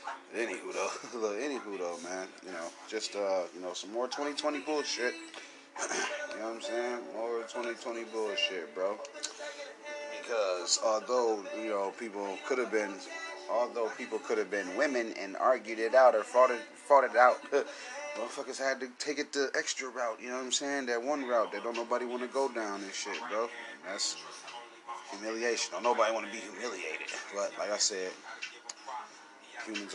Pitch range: 105-140 Hz